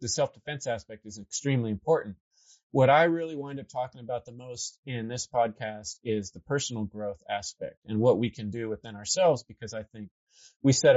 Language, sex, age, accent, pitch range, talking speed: English, male, 30-49, American, 110-140 Hz, 190 wpm